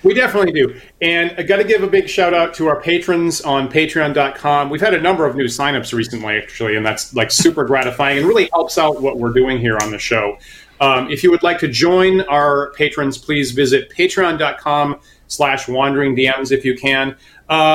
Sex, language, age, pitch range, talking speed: male, English, 30-49, 130-160 Hz, 205 wpm